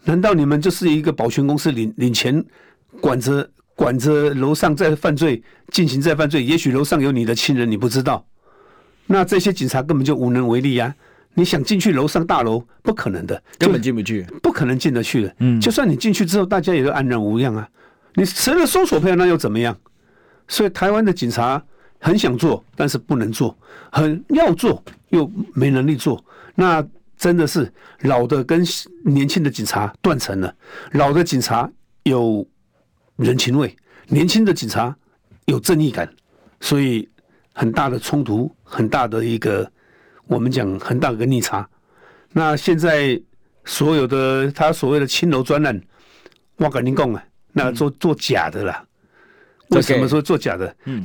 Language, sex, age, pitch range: Chinese, male, 50-69, 125-175 Hz